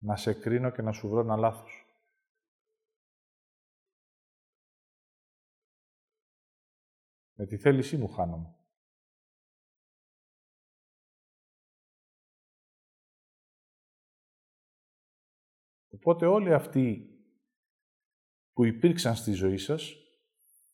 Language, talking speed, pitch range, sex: Greek, 65 wpm, 110-175 Hz, male